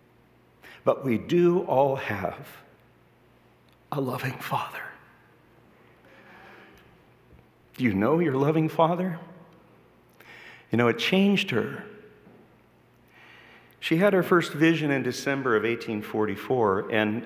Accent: American